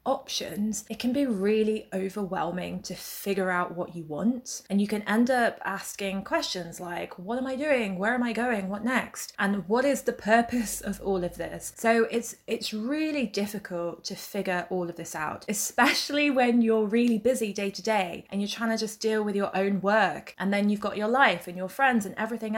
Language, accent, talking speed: English, British, 210 wpm